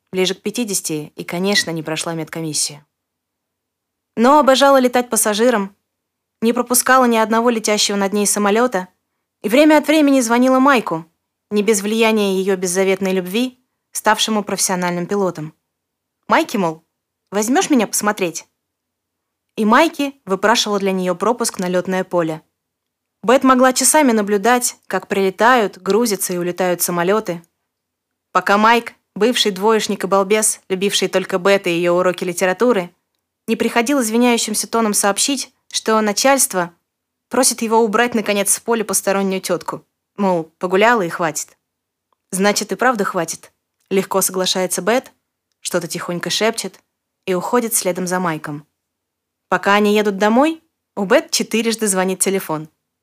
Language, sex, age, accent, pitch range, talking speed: Russian, female, 20-39, native, 180-230 Hz, 130 wpm